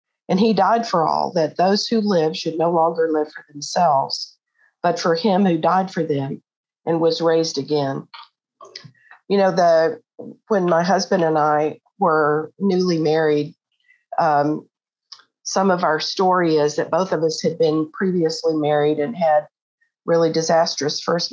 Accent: American